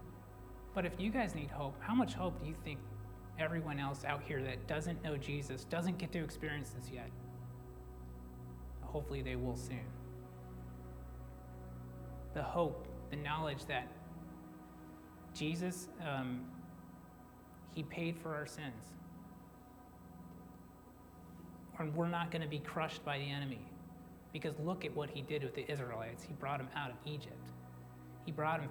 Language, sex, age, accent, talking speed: English, male, 30-49, American, 145 wpm